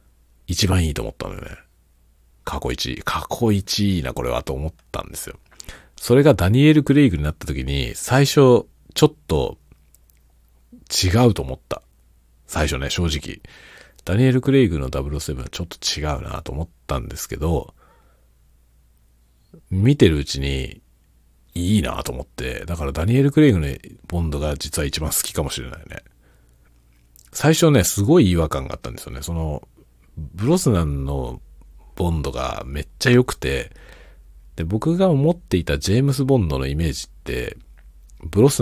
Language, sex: Japanese, male